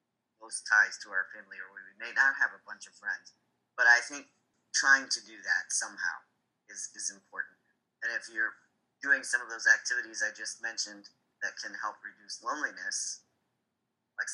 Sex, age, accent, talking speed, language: male, 30-49, American, 175 wpm, English